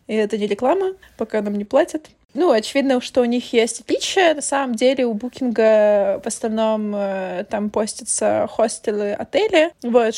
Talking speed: 165 wpm